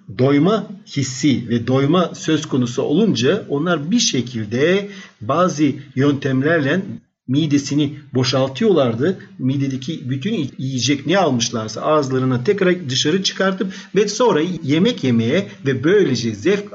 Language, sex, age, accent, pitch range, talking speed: Turkish, male, 50-69, native, 125-180 Hz, 110 wpm